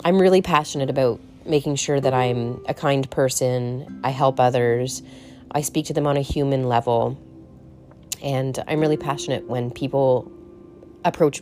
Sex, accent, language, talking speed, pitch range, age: female, American, English, 150 wpm, 125-145 Hz, 30-49